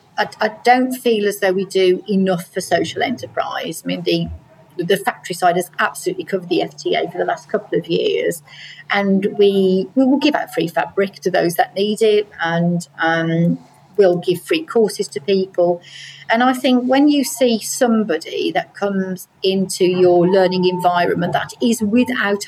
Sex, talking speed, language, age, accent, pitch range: female, 175 wpm, English, 40-59, British, 180-250 Hz